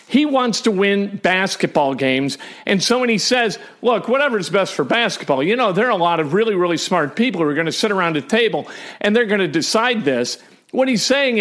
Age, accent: 50-69, American